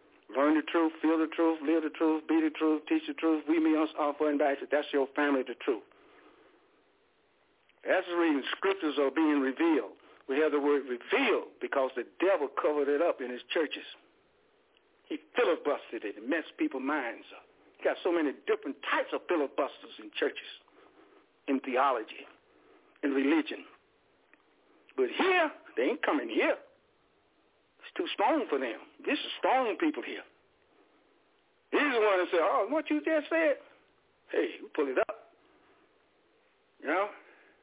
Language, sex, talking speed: English, male, 160 wpm